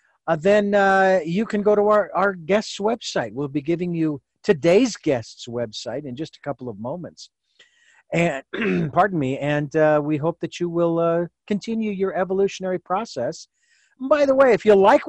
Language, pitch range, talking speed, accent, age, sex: English, 140-200 Hz, 180 wpm, American, 50-69, male